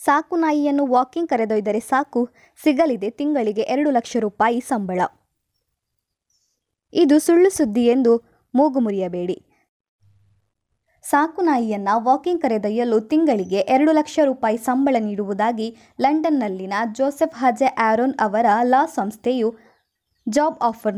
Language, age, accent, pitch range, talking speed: Kannada, 20-39, native, 215-285 Hz, 95 wpm